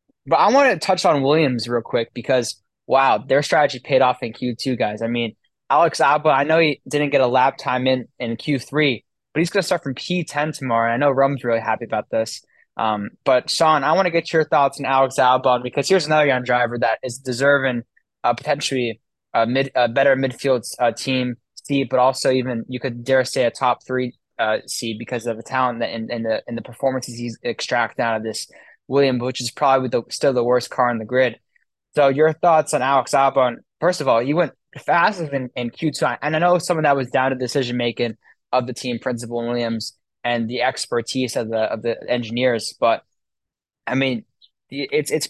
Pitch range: 115-140 Hz